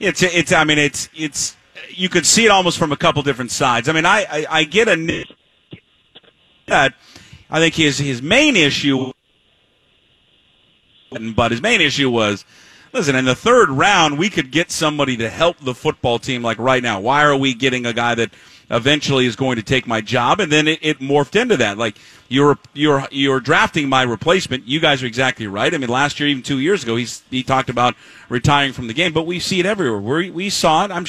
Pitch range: 130-165 Hz